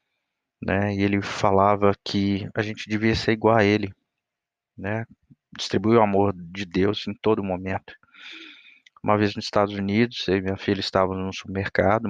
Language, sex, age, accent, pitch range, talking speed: Portuguese, male, 20-39, Brazilian, 95-115 Hz, 155 wpm